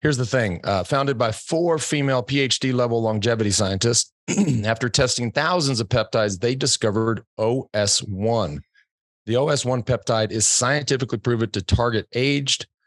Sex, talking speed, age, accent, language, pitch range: male, 130 wpm, 40-59, American, English, 110-140 Hz